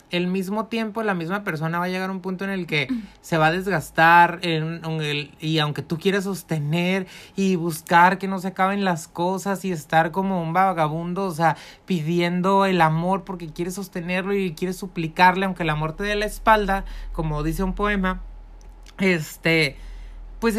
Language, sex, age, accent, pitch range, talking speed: Spanish, male, 30-49, Mexican, 160-200 Hz, 175 wpm